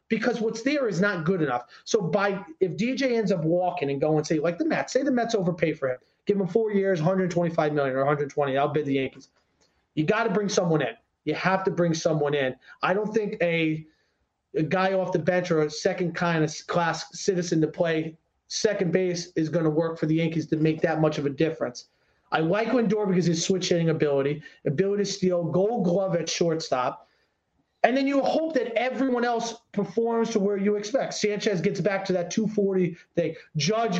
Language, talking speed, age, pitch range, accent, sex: English, 210 wpm, 30-49, 170-230 Hz, American, male